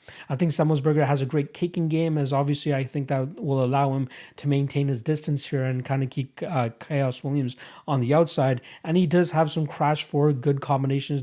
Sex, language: male, English